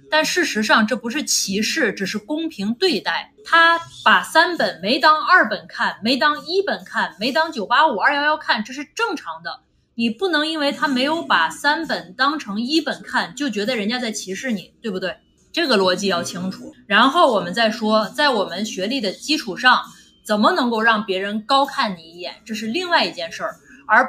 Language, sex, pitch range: Chinese, female, 200-275 Hz